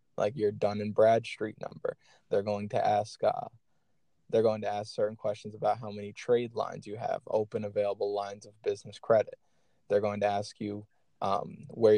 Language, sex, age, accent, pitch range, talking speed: English, male, 20-39, American, 105-110 Hz, 185 wpm